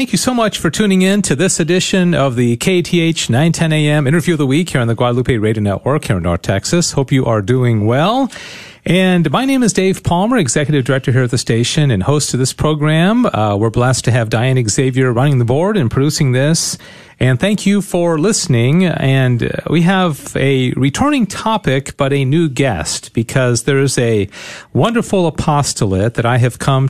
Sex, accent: male, American